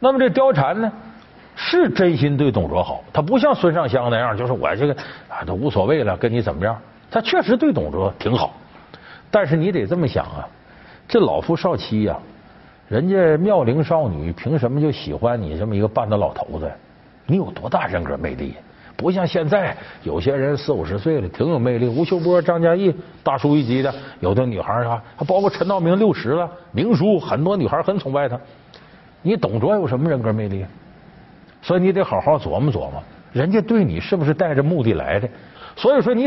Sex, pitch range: male, 120-180 Hz